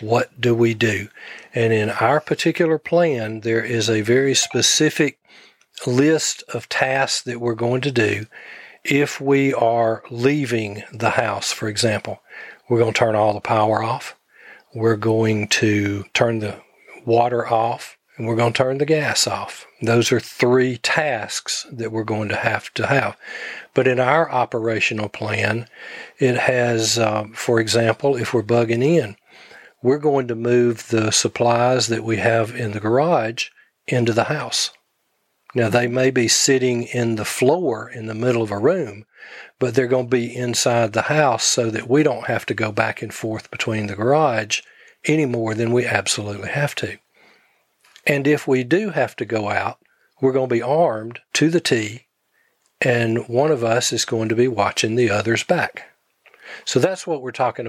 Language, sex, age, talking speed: English, male, 40-59, 175 wpm